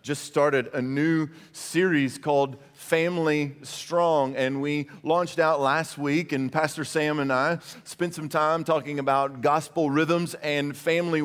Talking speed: 150 wpm